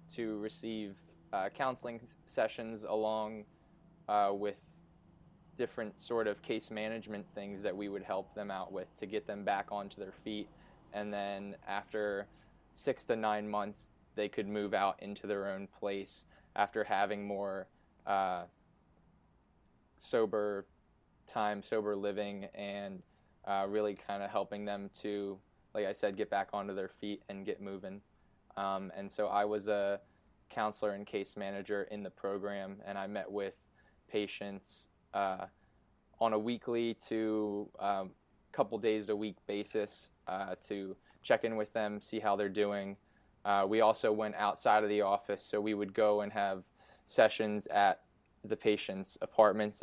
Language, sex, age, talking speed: English, male, 20-39, 155 wpm